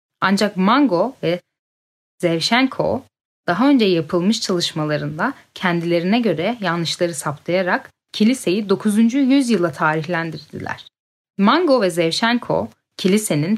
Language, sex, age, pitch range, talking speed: Turkish, female, 10-29, 170-225 Hz, 90 wpm